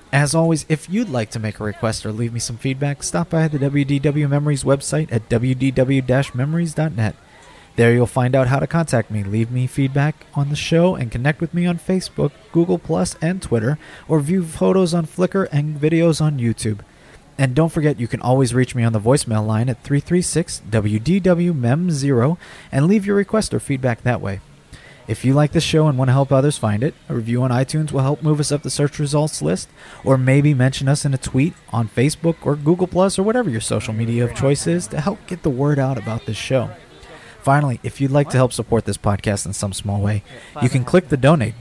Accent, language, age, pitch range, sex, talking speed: American, English, 30-49, 120-160 Hz, male, 215 wpm